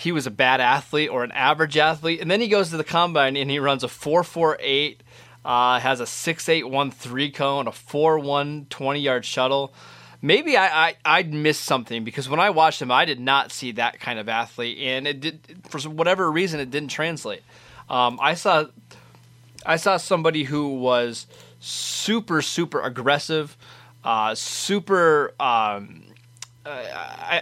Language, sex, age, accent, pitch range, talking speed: English, male, 20-39, American, 125-155 Hz, 175 wpm